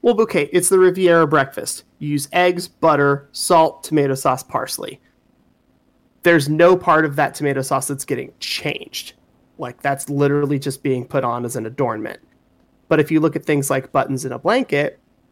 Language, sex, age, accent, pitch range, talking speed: English, male, 30-49, American, 135-160 Hz, 175 wpm